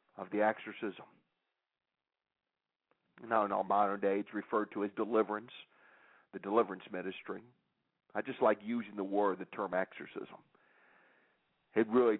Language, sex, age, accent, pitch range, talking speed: English, male, 50-69, American, 105-170 Hz, 135 wpm